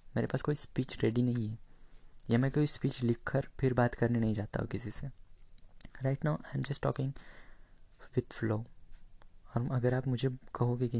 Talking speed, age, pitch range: 180 wpm, 20-39, 115-135 Hz